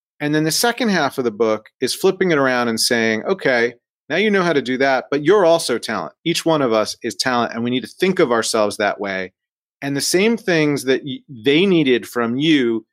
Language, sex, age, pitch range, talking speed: English, male, 40-59, 115-140 Hz, 230 wpm